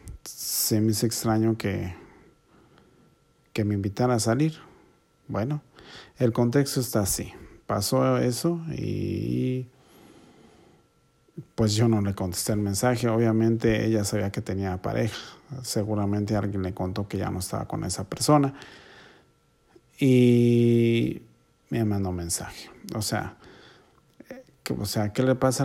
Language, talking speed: Spanish, 120 wpm